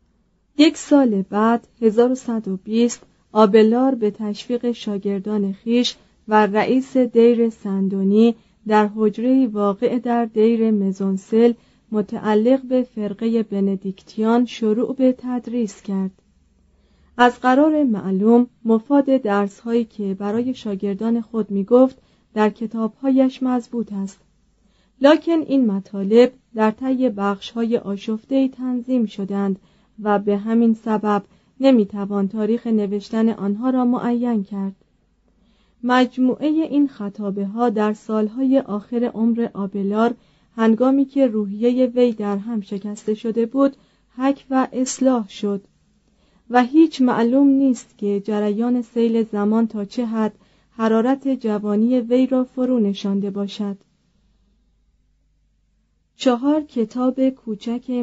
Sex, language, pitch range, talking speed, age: female, Persian, 205-245 Hz, 110 wpm, 40-59